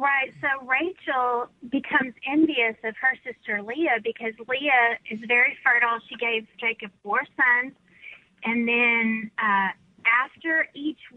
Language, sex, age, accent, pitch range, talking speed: English, female, 30-49, American, 225-275 Hz, 130 wpm